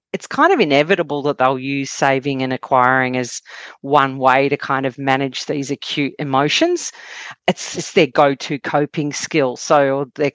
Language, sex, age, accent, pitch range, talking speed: English, female, 40-59, Australian, 140-180 Hz, 160 wpm